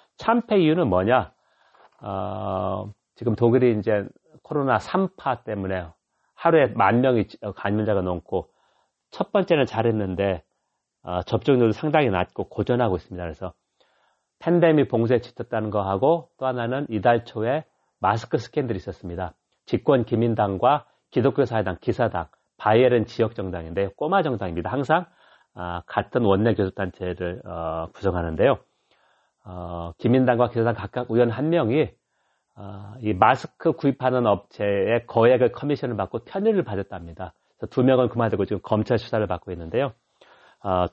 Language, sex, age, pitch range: Korean, male, 40-59, 95-130 Hz